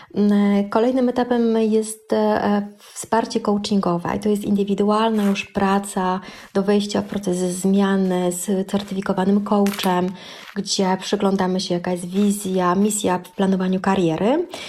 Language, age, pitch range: Polish, 20-39, 185-210 Hz